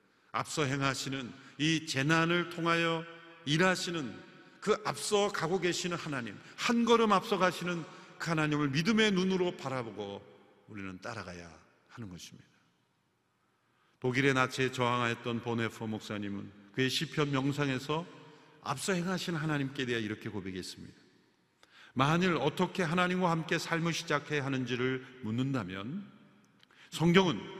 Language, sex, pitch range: Korean, male, 125-185 Hz